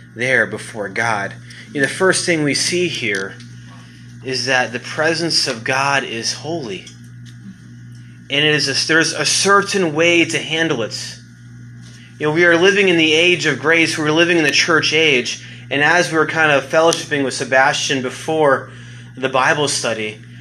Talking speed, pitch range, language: 170 wpm, 120-195 Hz, English